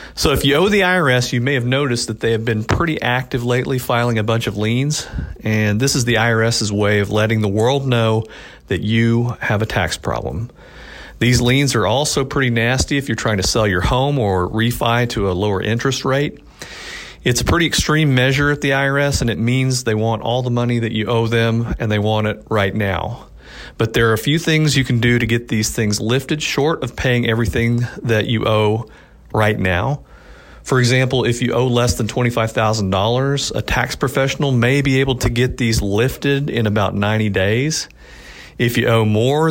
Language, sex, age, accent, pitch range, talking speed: English, male, 40-59, American, 110-135 Hz, 205 wpm